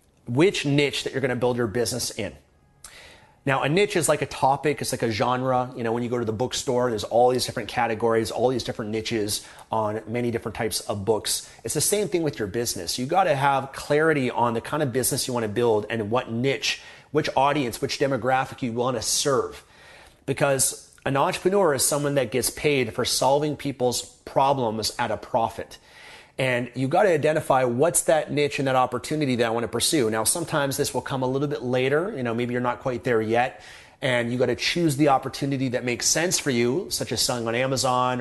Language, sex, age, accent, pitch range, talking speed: English, male, 30-49, American, 115-145 Hz, 220 wpm